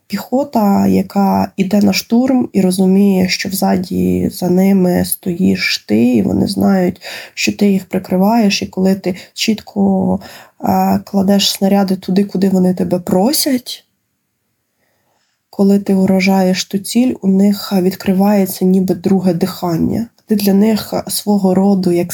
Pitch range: 185-205 Hz